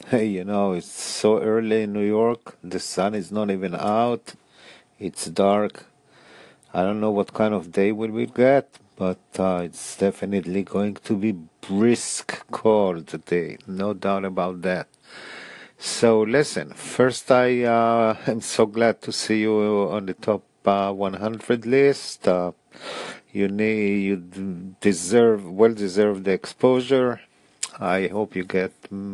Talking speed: 145 wpm